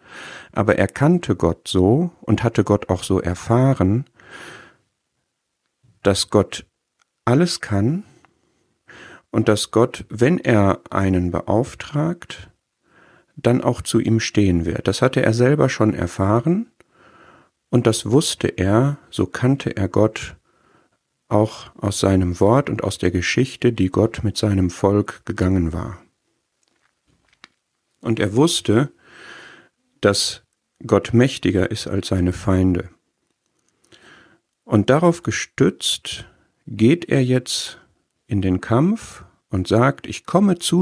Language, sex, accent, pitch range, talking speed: German, male, German, 95-130 Hz, 120 wpm